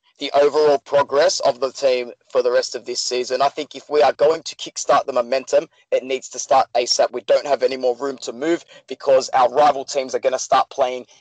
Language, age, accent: English, 30-49, Australian